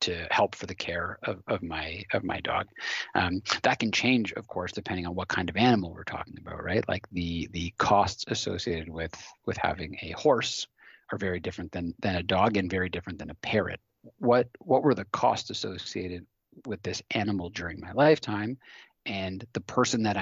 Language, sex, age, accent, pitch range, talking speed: English, male, 30-49, American, 90-105 Hz, 195 wpm